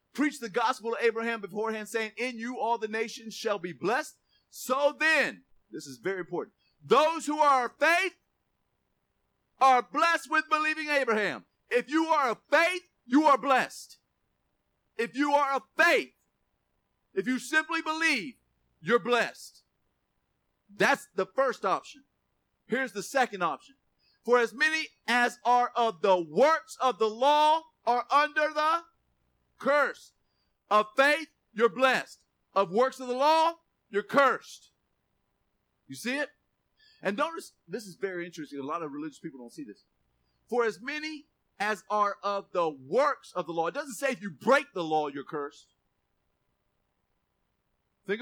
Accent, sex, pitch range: American, male, 175-285 Hz